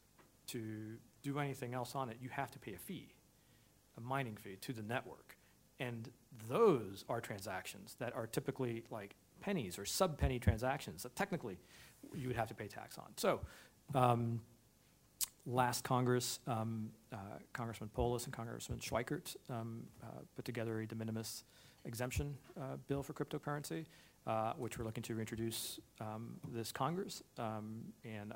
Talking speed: 155 wpm